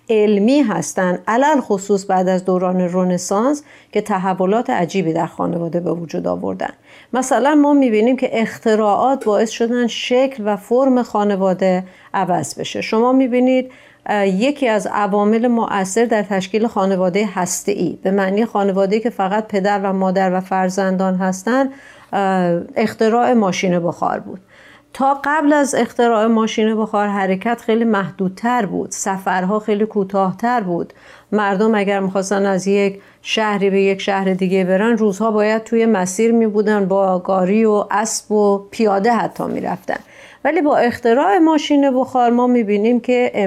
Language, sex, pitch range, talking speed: Persian, female, 195-240 Hz, 140 wpm